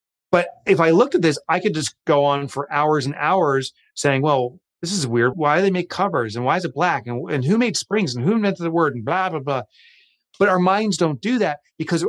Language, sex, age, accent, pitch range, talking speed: English, male, 30-49, American, 130-160 Hz, 255 wpm